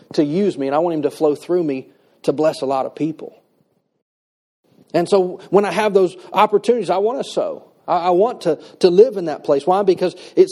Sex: male